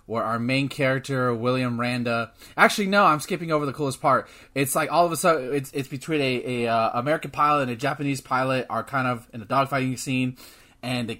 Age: 20-39